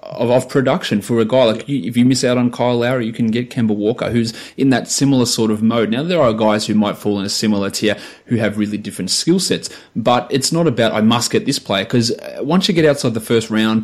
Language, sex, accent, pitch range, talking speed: English, male, Australian, 105-125 Hz, 265 wpm